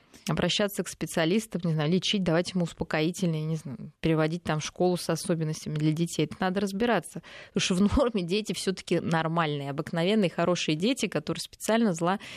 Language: Russian